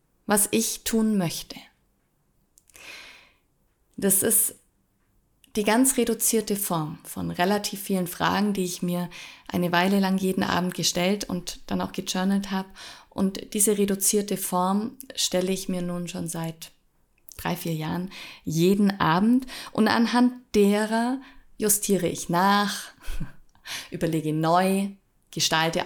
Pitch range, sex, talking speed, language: 175-220 Hz, female, 120 wpm, German